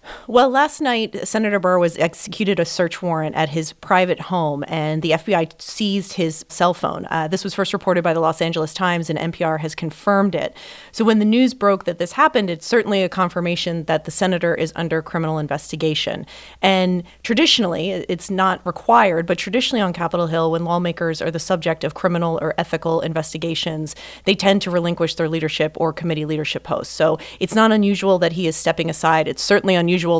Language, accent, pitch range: English, American, 160-190 Hz